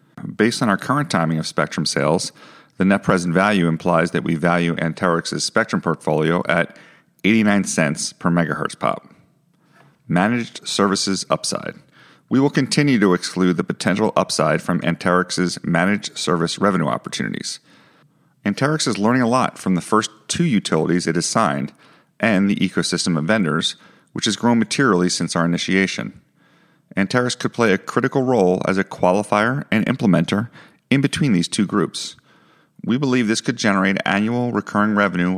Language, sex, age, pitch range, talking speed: English, male, 40-59, 90-110 Hz, 155 wpm